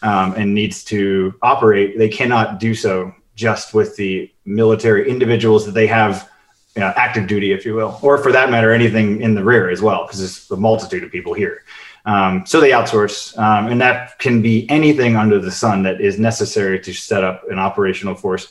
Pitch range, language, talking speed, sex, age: 100-115 Hz, English, 205 wpm, male, 30-49